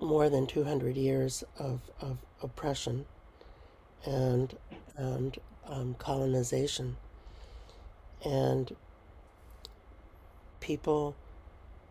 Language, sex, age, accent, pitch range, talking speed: English, male, 60-79, American, 80-135 Hz, 65 wpm